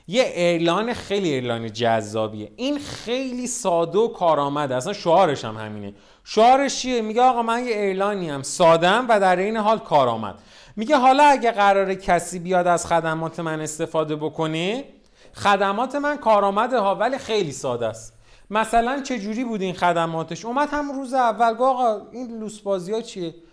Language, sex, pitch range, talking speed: Persian, male, 165-230 Hz, 155 wpm